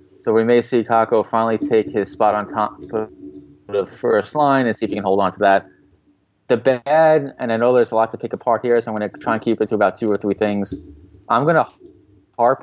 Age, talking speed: 20-39, 255 wpm